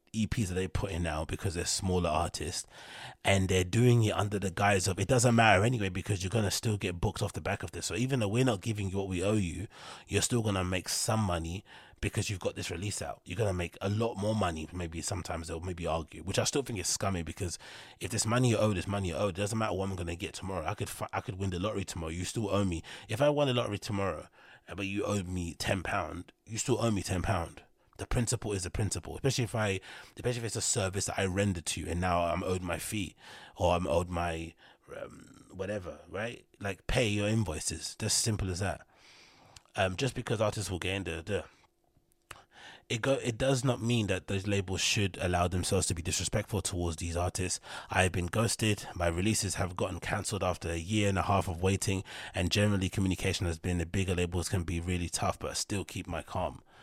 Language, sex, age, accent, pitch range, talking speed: English, male, 20-39, British, 90-110 Hz, 240 wpm